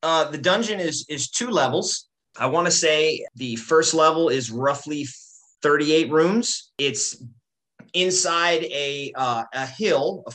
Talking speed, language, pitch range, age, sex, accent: 145 wpm, English, 125-160 Hz, 30-49, male, American